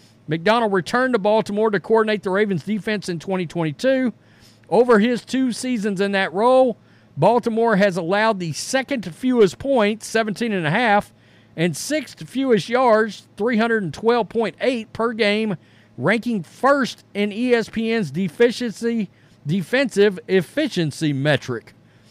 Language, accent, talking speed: English, American, 105 wpm